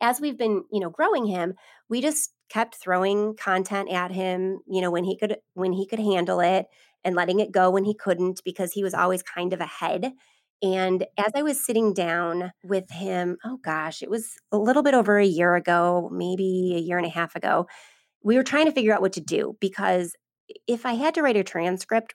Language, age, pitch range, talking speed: English, 30-49, 175-210 Hz, 220 wpm